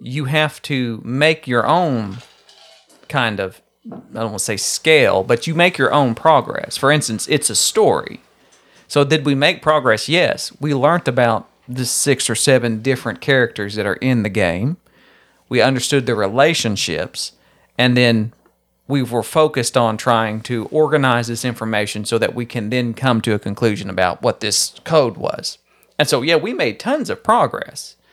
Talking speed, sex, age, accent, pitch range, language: 175 wpm, male, 40-59, American, 115-145 Hz, English